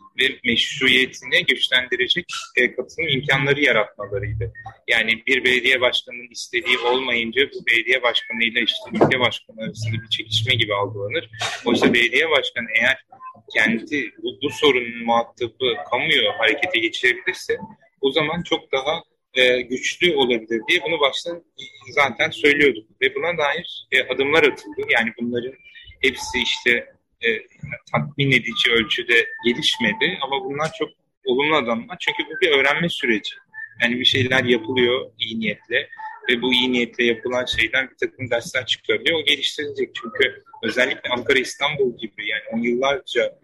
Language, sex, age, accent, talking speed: Turkish, male, 30-49, native, 130 wpm